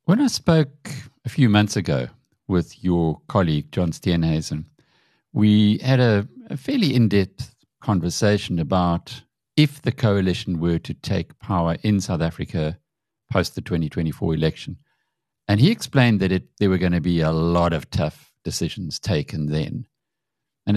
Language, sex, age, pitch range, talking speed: English, male, 50-69, 85-125 Hz, 150 wpm